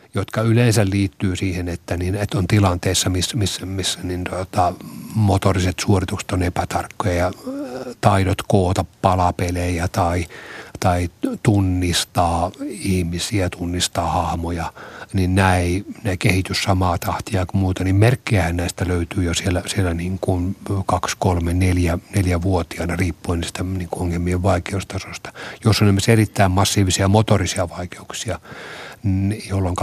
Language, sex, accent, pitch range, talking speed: Finnish, male, native, 90-105 Hz, 110 wpm